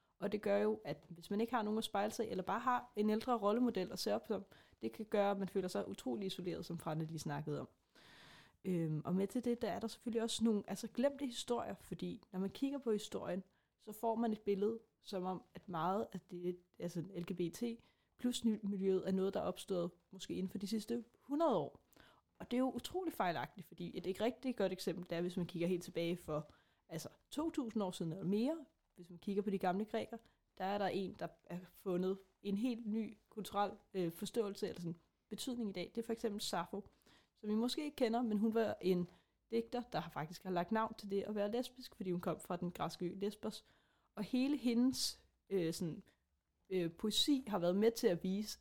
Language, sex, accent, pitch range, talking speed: Danish, female, native, 180-225 Hz, 220 wpm